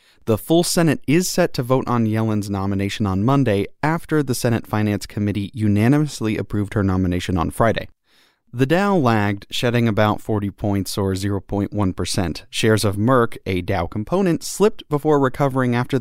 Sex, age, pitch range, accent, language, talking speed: male, 30-49, 105-130 Hz, American, English, 155 wpm